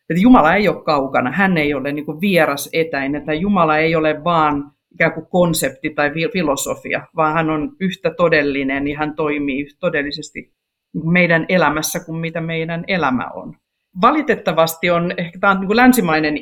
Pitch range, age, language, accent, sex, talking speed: 150-195 Hz, 50-69, Finnish, native, female, 140 wpm